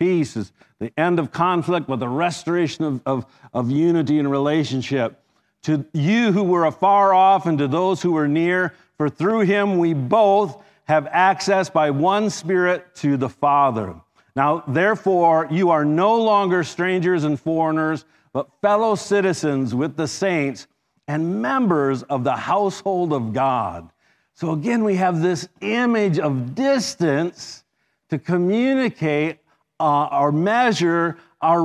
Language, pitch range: English, 145-185 Hz